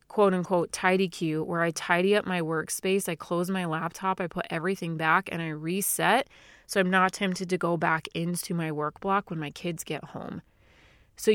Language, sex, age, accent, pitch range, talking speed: English, female, 30-49, American, 160-190 Hz, 195 wpm